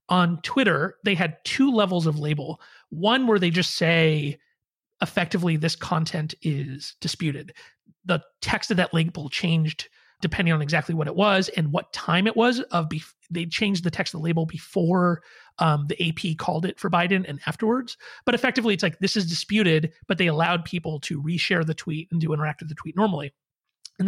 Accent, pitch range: American, 160-195 Hz